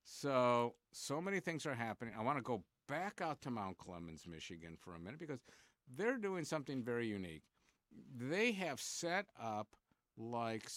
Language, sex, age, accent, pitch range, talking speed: English, male, 50-69, American, 100-130 Hz, 165 wpm